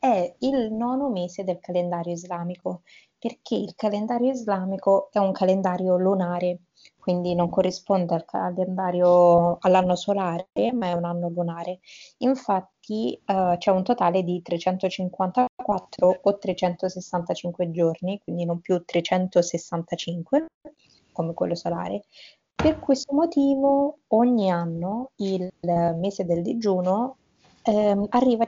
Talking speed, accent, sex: 105 wpm, native, female